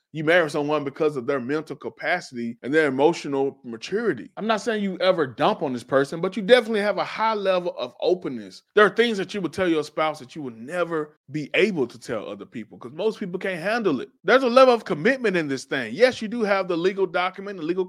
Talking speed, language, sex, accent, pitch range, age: 240 wpm, English, male, American, 145-215 Hz, 20-39